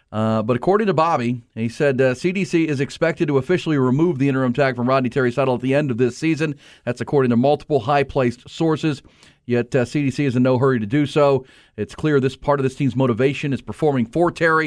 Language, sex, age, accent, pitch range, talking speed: English, male, 40-59, American, 115-145 Hz, 225 wpm